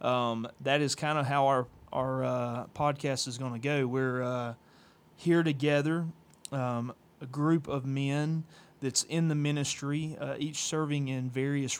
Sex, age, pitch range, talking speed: male, 30-49, 125-145 Hz, 165 wpm